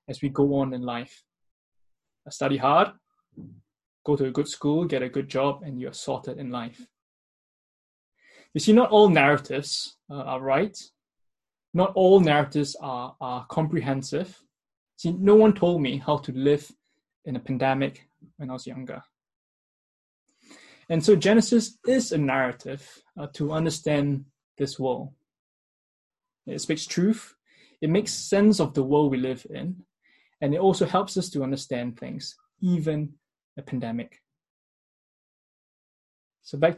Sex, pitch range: male, 135-170 Hz